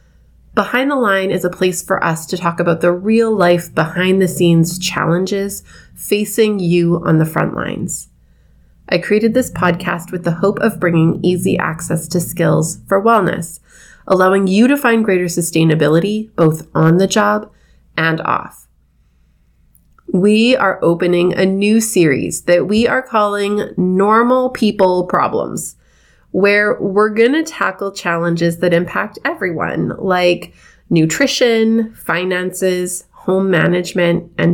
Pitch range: 170-210 Hz